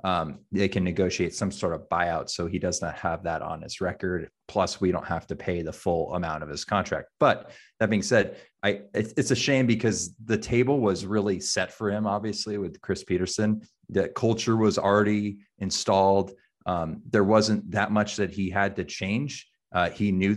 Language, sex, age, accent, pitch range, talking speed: English, male, 30-49, American, 95-110 Hz, 195 wpm